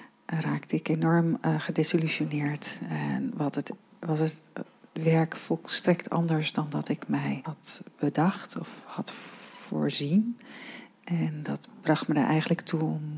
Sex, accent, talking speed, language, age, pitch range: female, Dutch, 135 wpm, Dutch, 40-59, 150-175 Hz